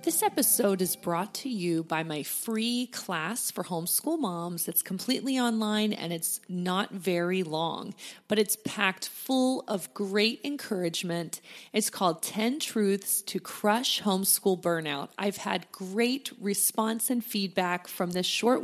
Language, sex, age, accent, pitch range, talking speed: English, female, 30-49, American, 185-245 Hz, 145 wpm